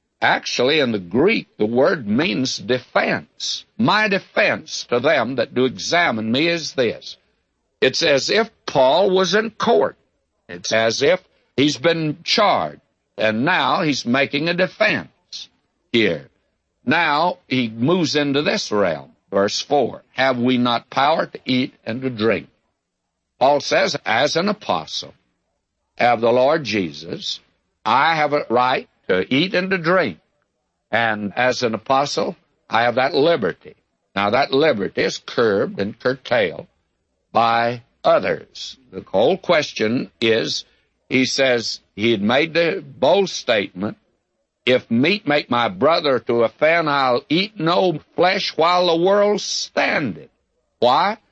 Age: 60-79